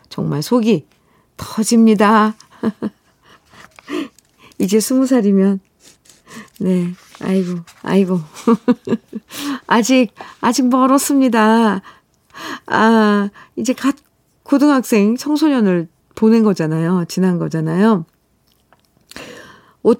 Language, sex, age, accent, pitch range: Korean, female, 50-69, native, 180-240 Hz